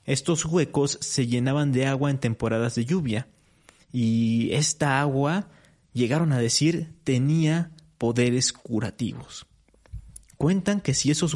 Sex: male